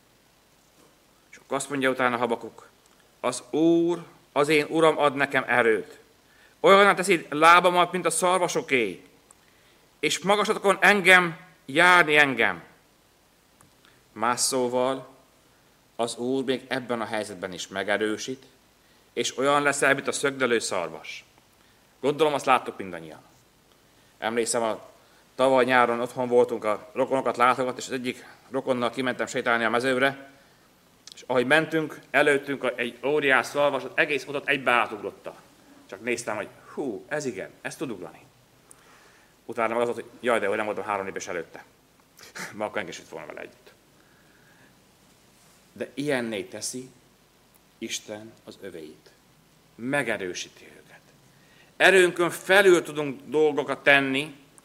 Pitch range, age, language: 125-160 Hz, 30-49, Hungarian